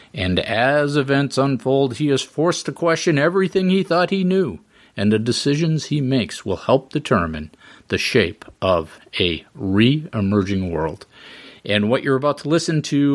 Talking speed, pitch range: 160 wpm, 105-160 Hz